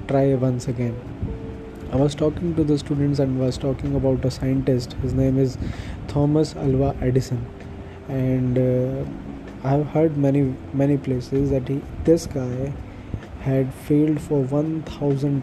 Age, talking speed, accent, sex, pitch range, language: 20-39, 145 wpm, Indian, male, 120-140 Hz, English